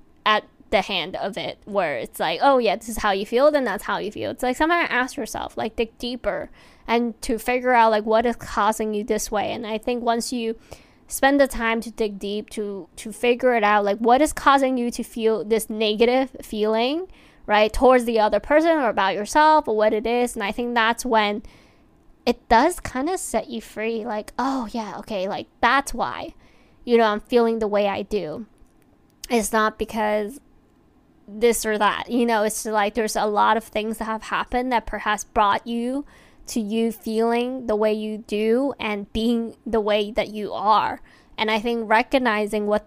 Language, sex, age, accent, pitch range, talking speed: English, female, 10-29, American, 210-245 Hz, 205 wpm